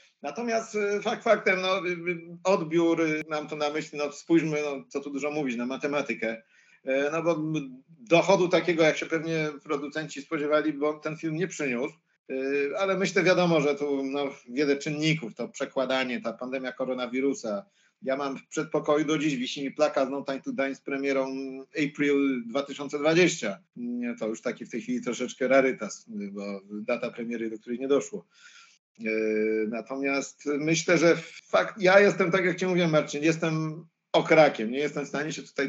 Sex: male